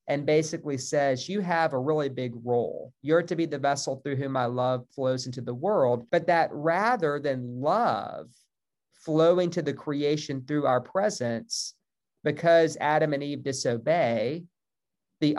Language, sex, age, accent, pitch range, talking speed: English, male, 40-59, American, 125-155 Hz, 155 wpm